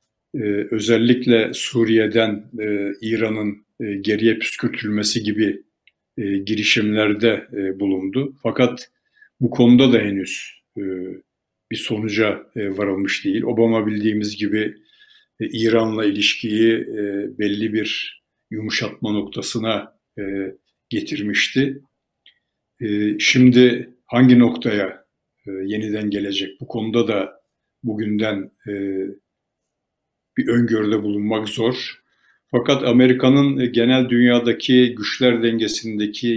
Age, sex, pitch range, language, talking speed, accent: 60-79, male, 105-120 Hz, Turkish, 80 wpm, native